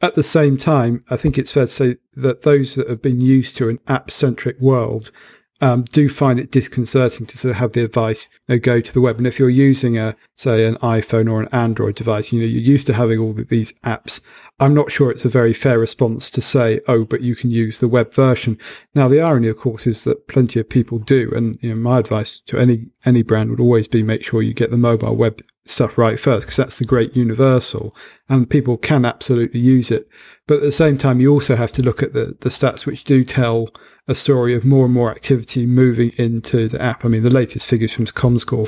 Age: 40-59